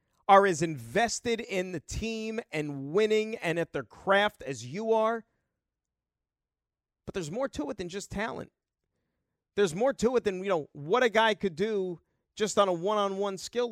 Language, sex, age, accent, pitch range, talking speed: English, male, 40-59, American, 180-265 Hz, 175 wpm